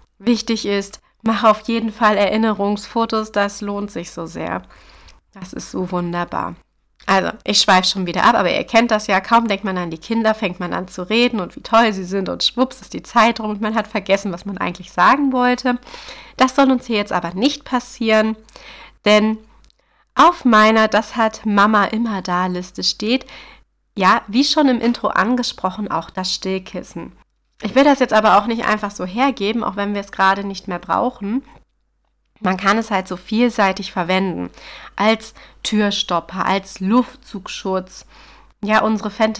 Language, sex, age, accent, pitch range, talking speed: German, female, 30-49, German, 190-230 Hz, 175 wpm